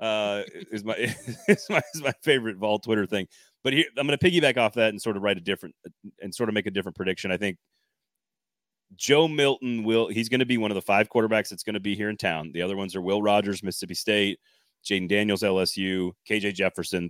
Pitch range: 95-115 Hz